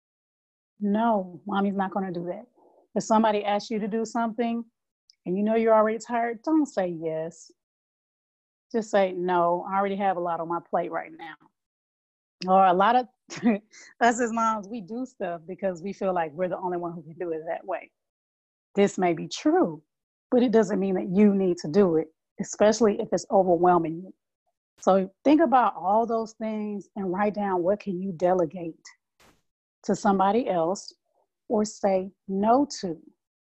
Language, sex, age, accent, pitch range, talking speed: English, female, 30-49, American, 180-225 Hz, 175 wpm